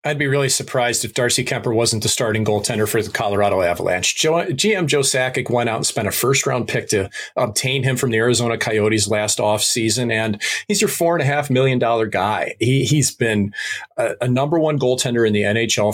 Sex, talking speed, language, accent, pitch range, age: male, 215 wpm, English, American, 110-145 Hz, 40-59